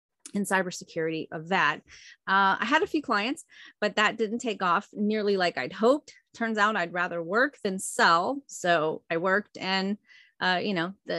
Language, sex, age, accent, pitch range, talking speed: English, female, 30-49, American, 180-225 Hz, 180 wpm